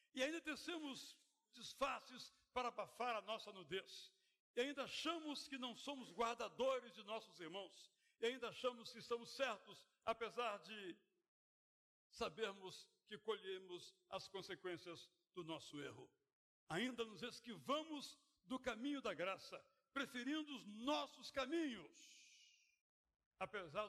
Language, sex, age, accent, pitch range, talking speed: Portuguese, male, 60-79, Brazilian, 205-270 Hz, 120 wpm